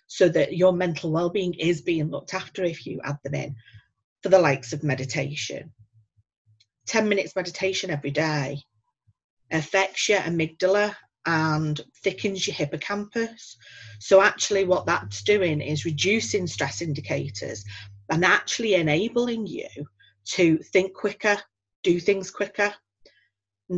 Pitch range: 145-195 Hz